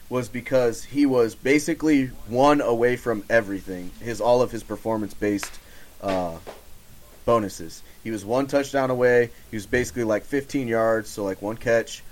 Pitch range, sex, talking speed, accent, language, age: 105-130 Hz, male, 155 wpm, American, English, 30-49